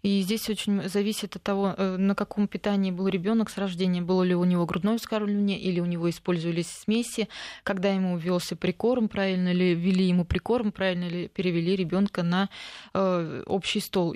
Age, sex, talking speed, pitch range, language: 20-39, female, 170 wpm, 180-205 Hz, Russian